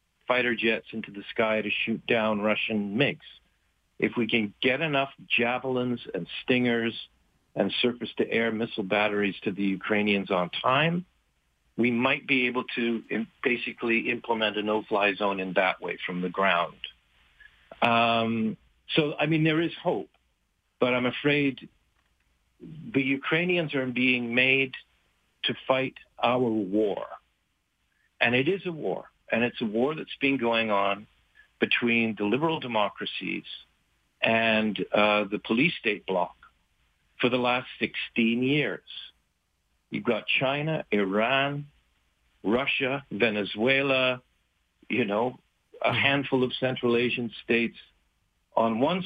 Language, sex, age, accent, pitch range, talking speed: English, male, 50-69, American, 100-135 Hz, 130 wpm